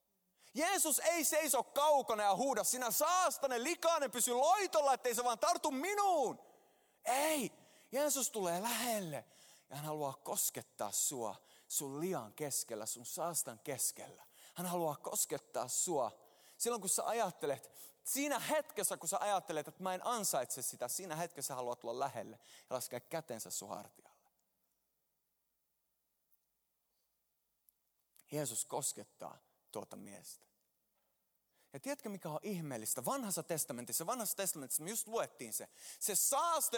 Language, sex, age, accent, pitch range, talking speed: Finnish, male, 30-49, native, 170-275 Hz, 125 wpm